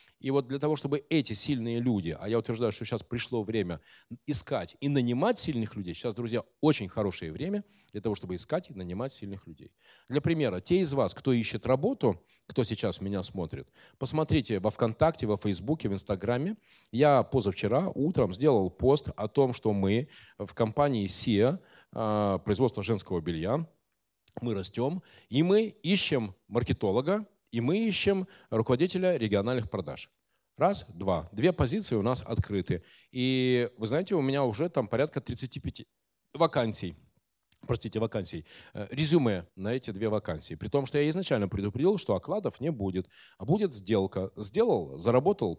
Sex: male